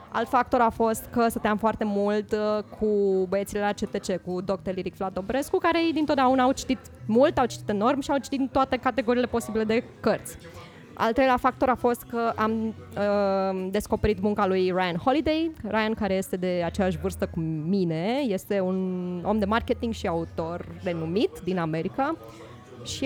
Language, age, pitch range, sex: Romanian, 20-39, 190-255 Hz, female